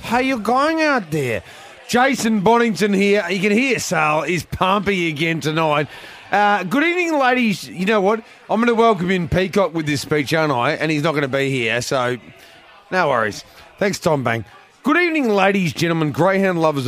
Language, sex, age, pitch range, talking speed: English, male, 30-49, 140-210 Hz, 190 wpm